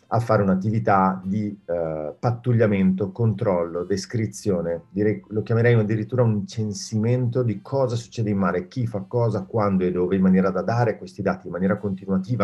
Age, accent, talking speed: 40-59, native, 165 wpm